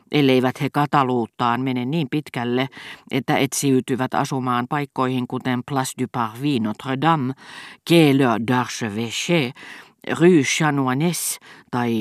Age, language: 50-69, Finnish